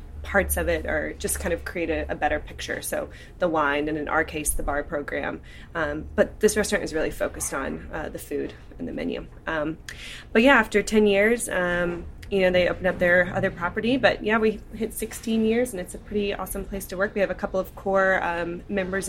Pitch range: 160-195 Hz